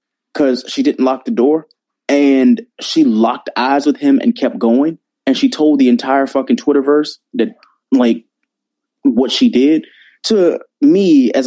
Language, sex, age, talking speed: English, male, 20-39, 155 wpm